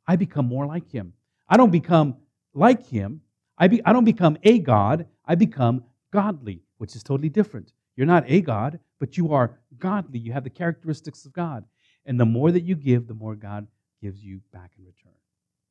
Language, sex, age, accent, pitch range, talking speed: English, male, 50-69, American, 115-185 Hz, 200 wpm